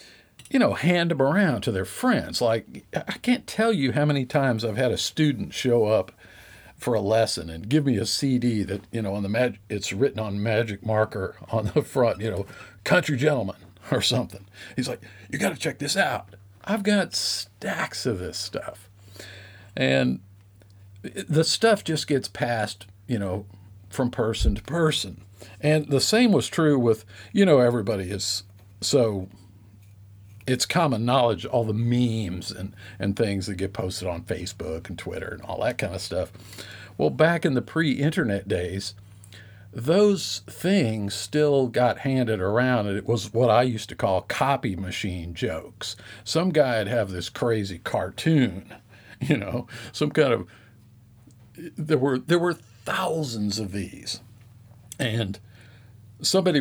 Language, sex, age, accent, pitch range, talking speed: English, male, 50-69, American, 100-135 Hz, 160 wpm